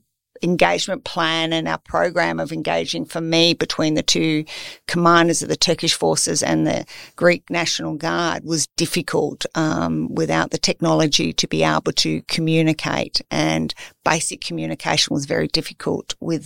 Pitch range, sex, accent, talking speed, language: 150-170 Hz, female, Australian, 145 wpm, English